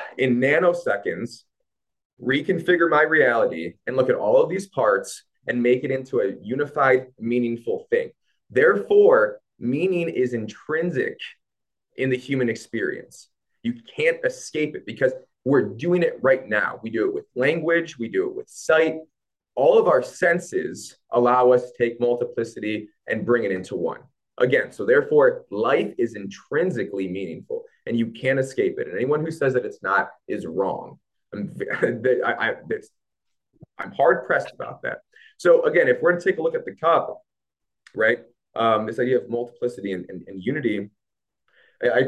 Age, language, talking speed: 20-39, English, 160 wpm